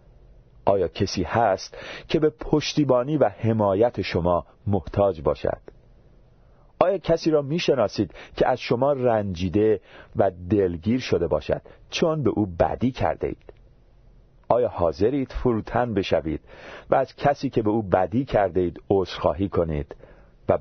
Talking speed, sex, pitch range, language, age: 130 wpm, male, 95-130 Hz, Persian, 40-59